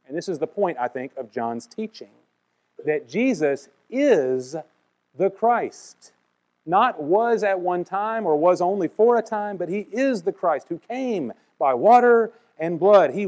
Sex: male